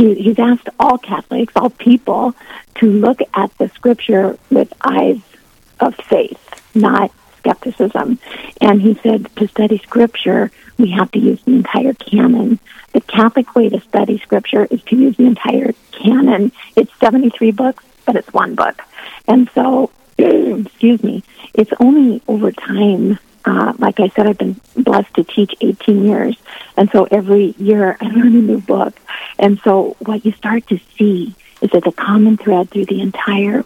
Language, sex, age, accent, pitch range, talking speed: English, female, 50-69, American, 200-240 Hz, 165 wpm